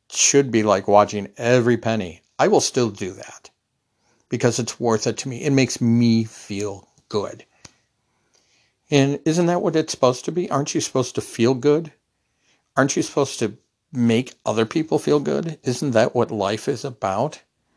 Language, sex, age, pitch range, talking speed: English, male, 50-69, 110-135 Hz, 170 wpm